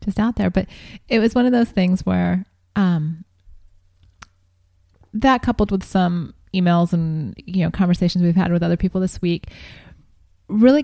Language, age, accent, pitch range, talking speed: English, 20-39, American, 165-195 Hz, 160 wpm